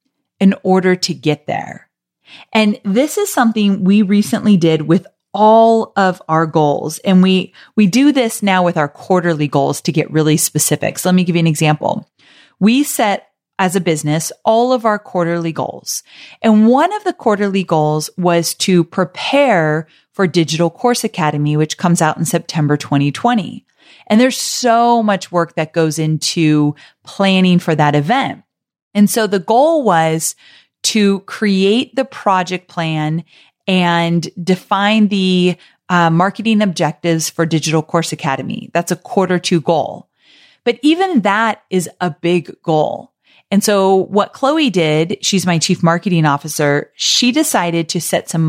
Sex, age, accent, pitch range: female, 30-49, American, 160-210 Hz